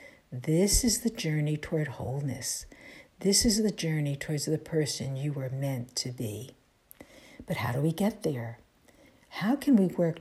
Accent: American